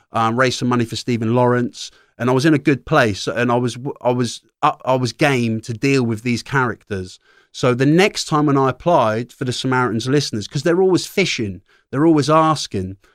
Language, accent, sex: English, British, male